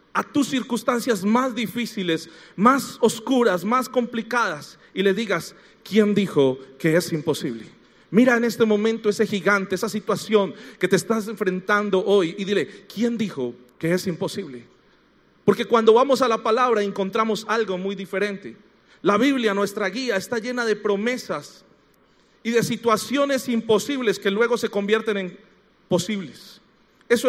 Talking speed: 145 wpm